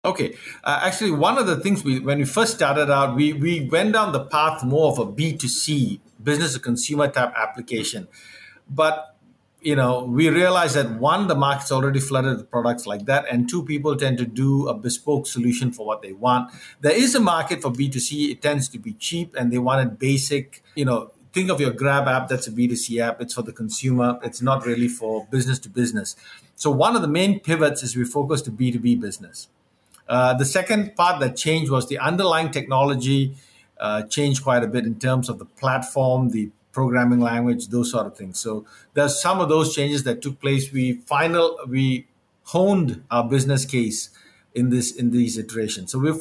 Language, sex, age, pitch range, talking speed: English, male, 50-69, 125-155 Hz, 195 wpm